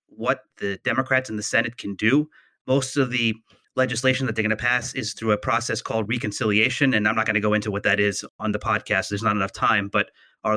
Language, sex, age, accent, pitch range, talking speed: English, male, 30-49, American, 105-130 Hz, 240 wpm